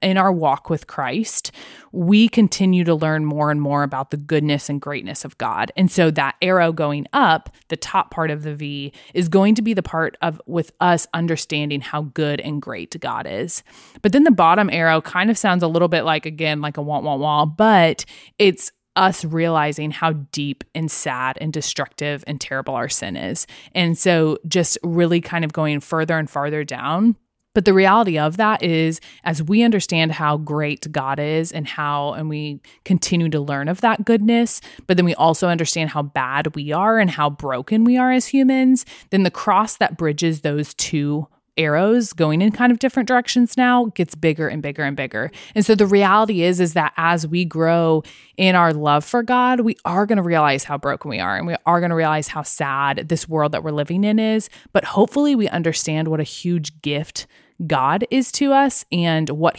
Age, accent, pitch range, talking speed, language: 20-39, American, 150-190 Hz, 205 wpm, English